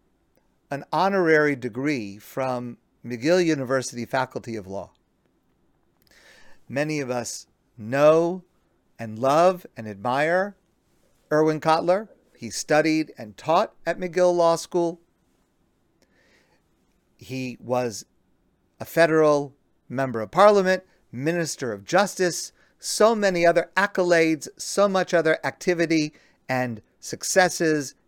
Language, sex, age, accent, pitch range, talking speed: English, male, 50-69, American, 125-170 Hz, 100 wpm